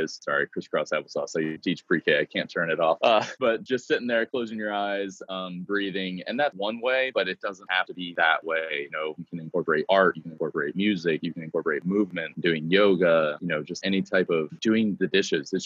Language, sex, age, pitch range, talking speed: English, male, 20-39, 80-95 Hz, 225 wpm